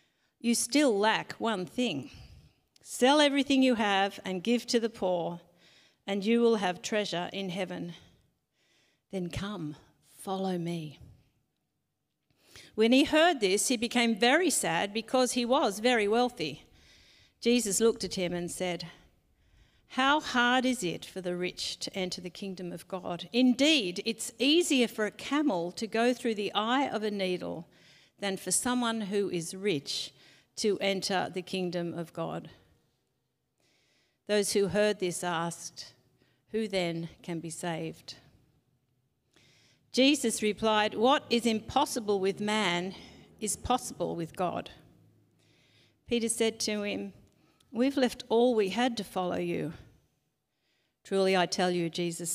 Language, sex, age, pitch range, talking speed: English, female, 50-69, 175-235 Hz, 140 wpm